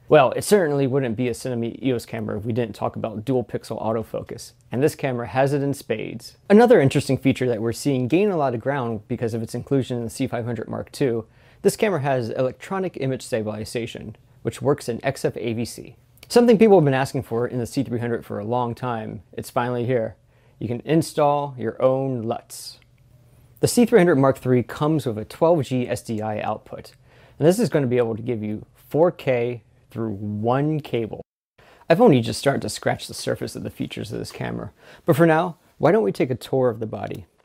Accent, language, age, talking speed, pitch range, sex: American, English, 30-49, 200 wpm, 115-140 Hz, male